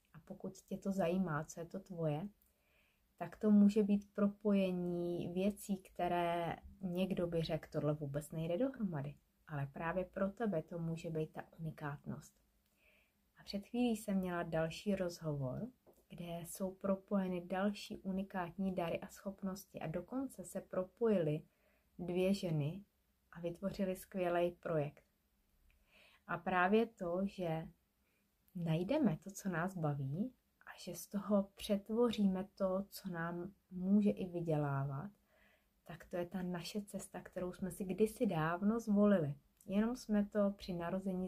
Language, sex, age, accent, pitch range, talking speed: Czech, female, 30-49, native, 170-205 Hz, 135 wpm